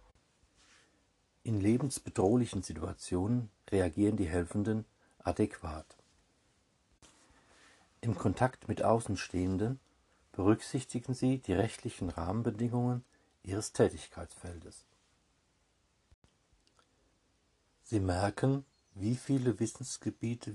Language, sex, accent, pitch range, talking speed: German, male, German, 90-110 Hz, 65 wpm